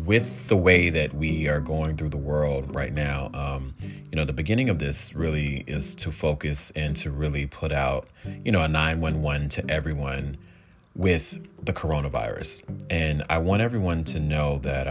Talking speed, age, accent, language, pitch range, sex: 175 wpm, 30-49, American, English, 75-110 Hz, male